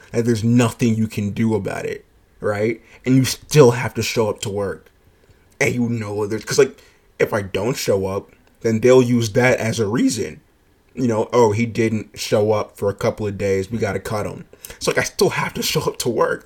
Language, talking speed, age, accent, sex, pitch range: English, 225 wpm, 20-39, American, male, 105-125 Hz